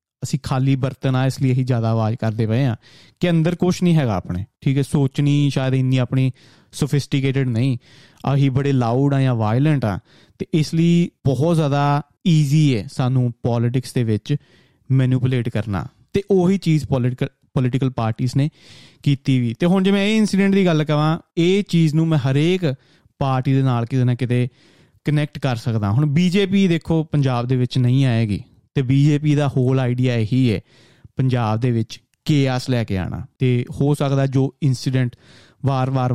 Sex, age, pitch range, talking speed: male, 30-49, 120-145 Hz, 165 wpm